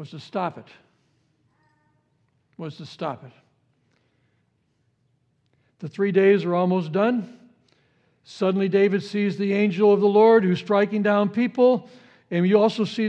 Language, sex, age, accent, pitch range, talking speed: English, male, 60-79, American, 170-235 Hz, 140 wpm